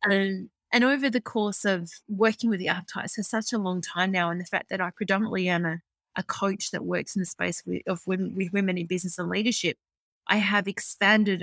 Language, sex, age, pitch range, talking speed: English, female, 20-39, 175-210 Hz, 225 wpm